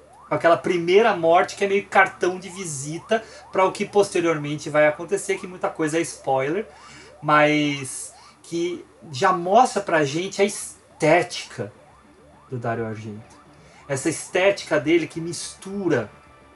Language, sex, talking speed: Portuguese, male, 135 wpm